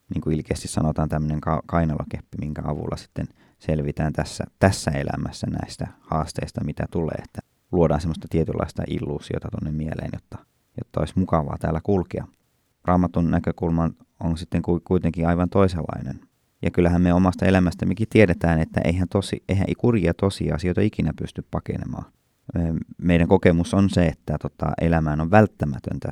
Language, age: Finnish, 20-39